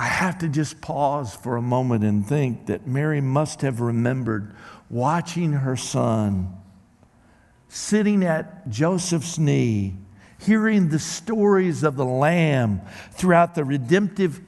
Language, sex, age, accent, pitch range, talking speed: English, male, 50-69, American, 115-160 Hz, 130 wpm